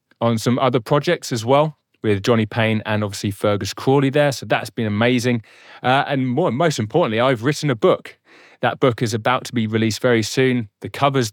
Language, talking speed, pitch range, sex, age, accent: English, 195 wpm, 100-135 Hz, male, 30-49, British